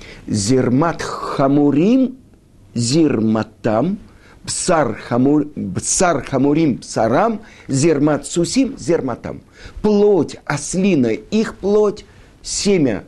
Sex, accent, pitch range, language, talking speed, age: male, native, 105-155 Hz, Russian, 85 wpm, 60-79